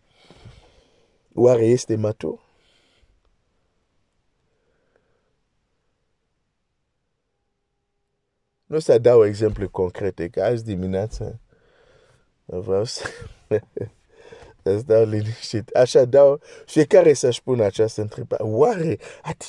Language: Romanian